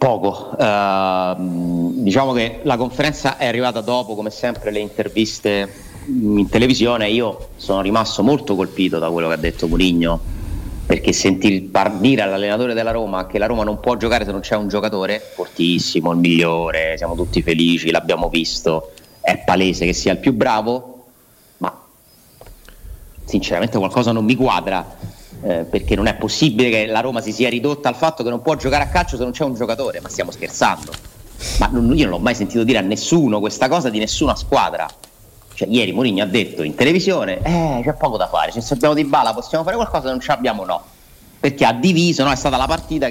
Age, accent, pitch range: 30-49, native, 95-125 Hz